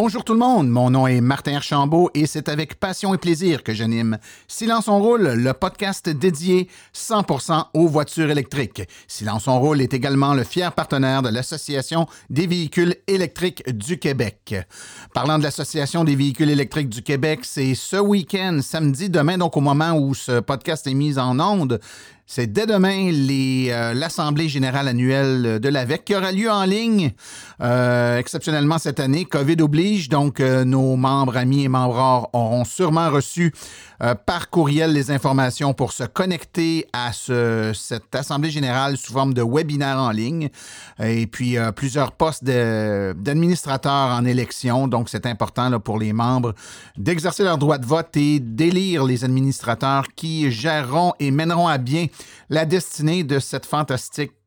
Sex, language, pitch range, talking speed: male, French, 130-165 Hz, 170 wpm